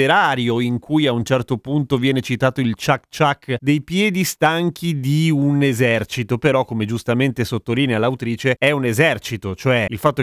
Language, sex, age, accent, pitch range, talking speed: Italian, male, 30-49, native, 120-150 Hz, 160 wpm